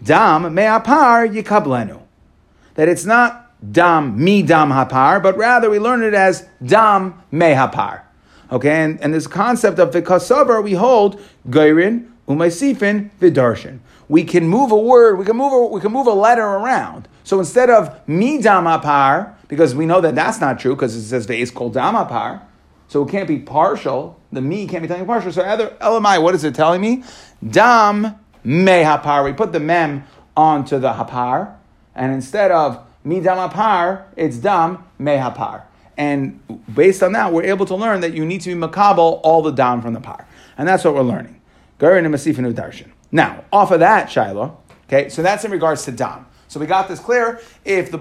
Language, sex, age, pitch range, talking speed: English, male, 40-59, 150-205 Hz, 185 wpm